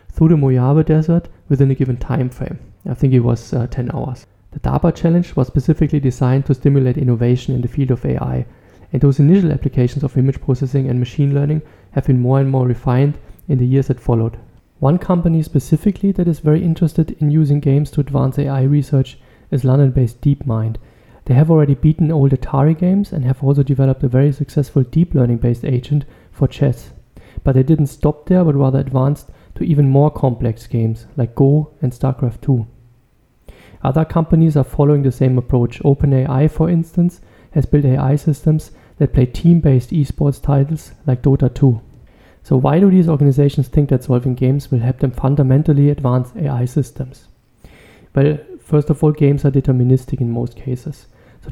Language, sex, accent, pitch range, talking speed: English, male, German, 130-150 Hz, 180 wpm